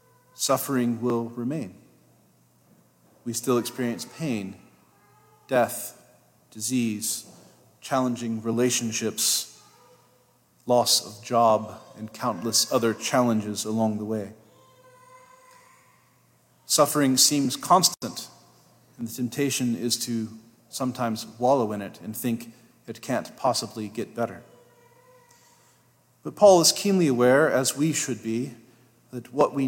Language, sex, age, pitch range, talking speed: English, male, 40-59, 115-155 Hz, 105 wpm